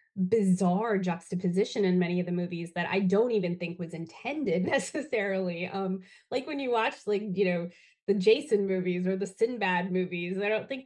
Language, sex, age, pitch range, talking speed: English, female, 20-39, 175-200 Hz, 180 wpm